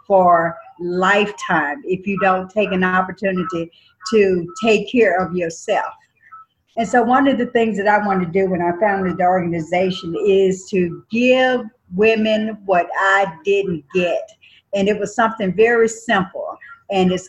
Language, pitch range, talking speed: English, 185-230 Hz, 155 wpm